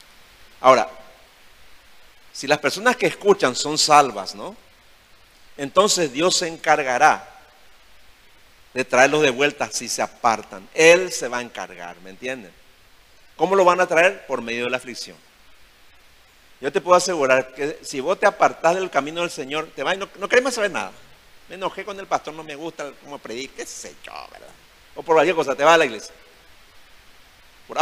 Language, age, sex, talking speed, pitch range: Spanish, 50-69, male, 175 wpm, 115-170 Hz